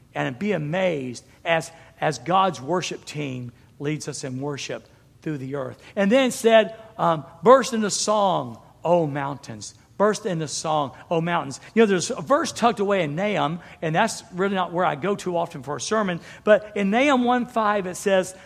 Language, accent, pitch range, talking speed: English, American, 165-225 Hz, 180 wpm